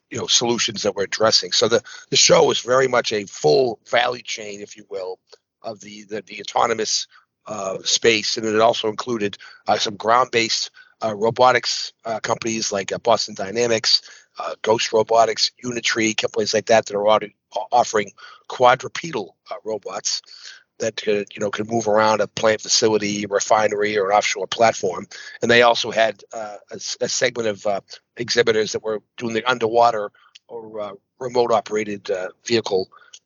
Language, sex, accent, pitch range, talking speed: English, male, American, 105-120 Hz, 150 wpm